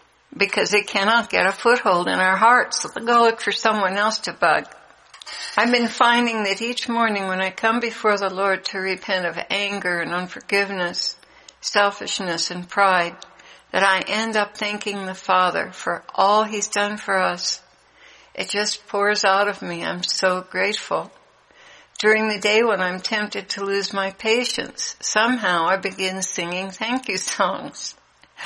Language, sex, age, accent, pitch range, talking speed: English, female, 60-79, American, 190-220 Hz, 160 wpm